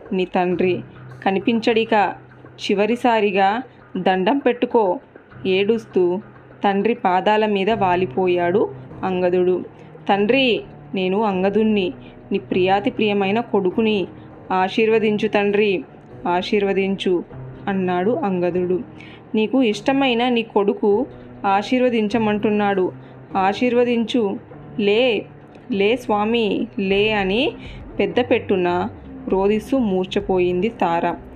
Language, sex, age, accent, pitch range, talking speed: Telugu, female, 20-39, native, 185-230 Hz, 75 wpm